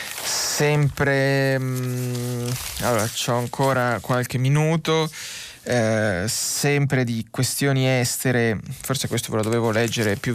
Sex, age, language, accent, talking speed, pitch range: male, 20-39, Italian, native, 105 wpm, 115-135 Hz